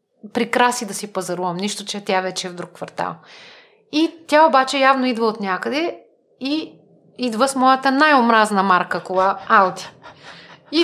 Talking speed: 155 wpm